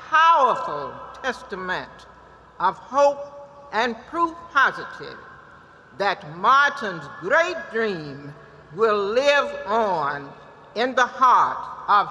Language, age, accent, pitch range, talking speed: English, 60-79, American, 200-285 Hz, 90 wpm